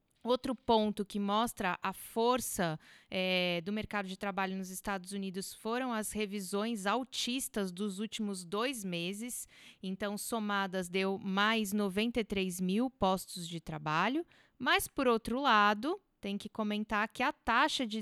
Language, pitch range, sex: Portuguese, 195-230 Hz, female